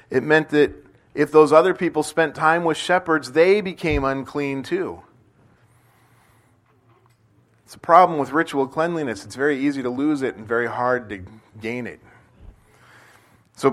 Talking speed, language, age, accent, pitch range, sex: 150 wpm, English, 40-59, American, 120-170 Hz, male